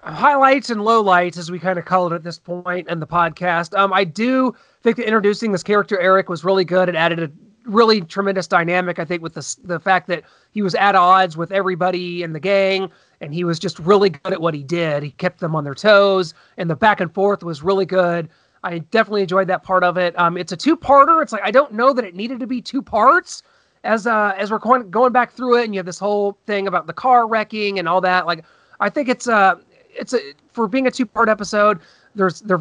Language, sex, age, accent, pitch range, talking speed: English, male, 30-49, American, 180-235 Hz, 245 wpm